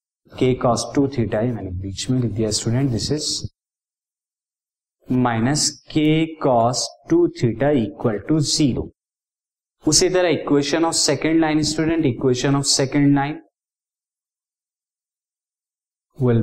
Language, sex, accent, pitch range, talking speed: Hindi, male, native, 120-150 Hz, 120 wpm